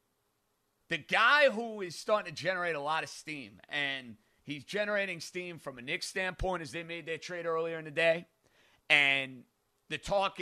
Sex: male